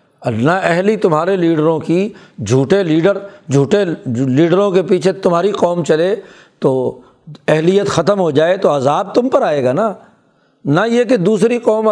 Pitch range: 160-195 Hz